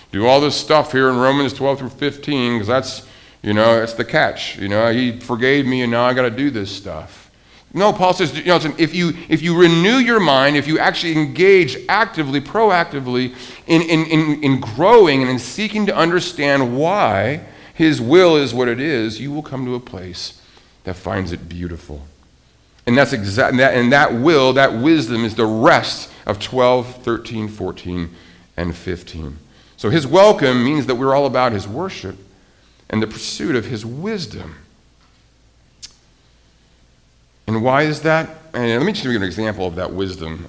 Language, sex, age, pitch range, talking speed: English, male, 40-59, 95-140 Hz, 180 wpm